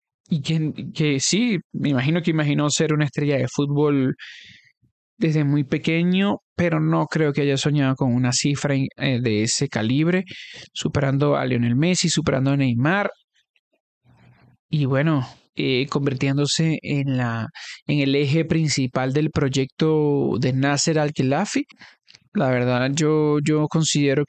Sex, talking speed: male, 135 wpm